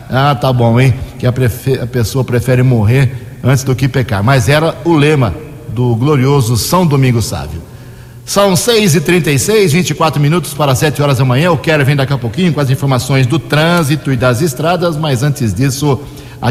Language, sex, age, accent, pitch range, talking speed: Portuguese, male, 60-79, Brazilian, 125-150 Hz, 195 wpm